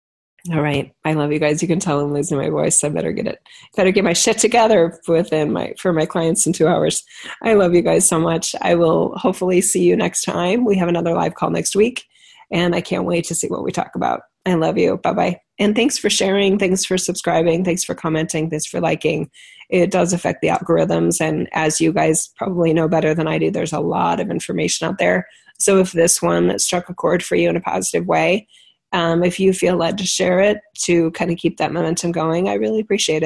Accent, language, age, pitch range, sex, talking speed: American, English, 30-49, 160-190 Hz, female, 235 wpm